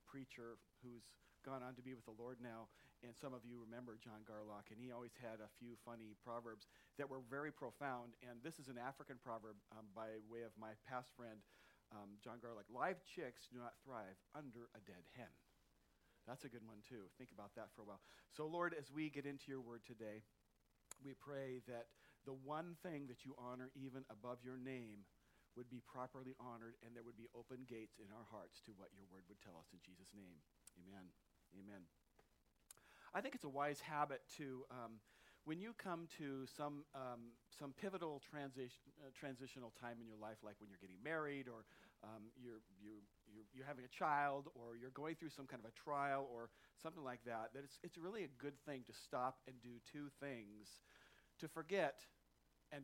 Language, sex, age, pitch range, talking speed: English, male, 50-69, 110-140 Hz, 200 wpm